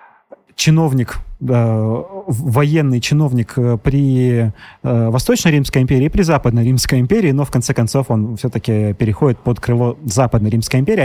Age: 30-49